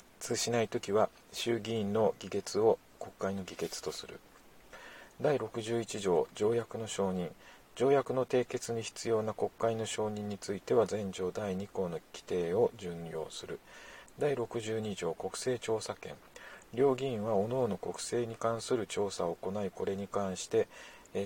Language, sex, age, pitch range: Japanese, male, 40-59, 100-120 Hz